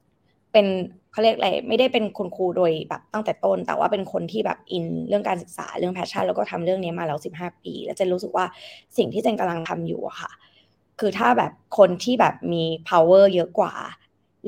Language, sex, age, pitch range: Thai, female, 20-39, 170-215 Hz